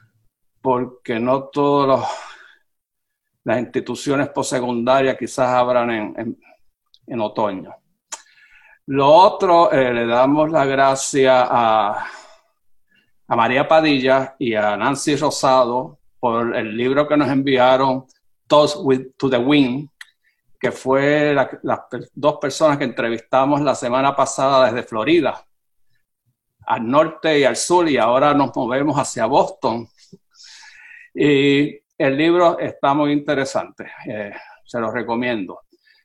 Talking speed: 120 wpm